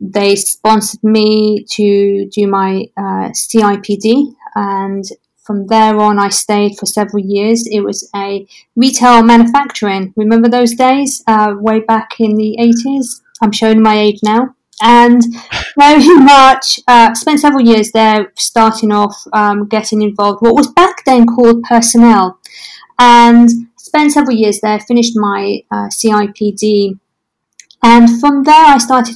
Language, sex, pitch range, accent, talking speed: English, female, 200-235 Hz, British, 140 wpm